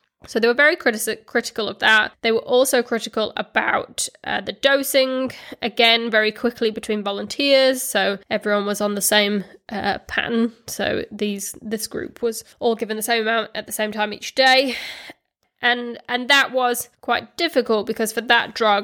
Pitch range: 215-245 Hz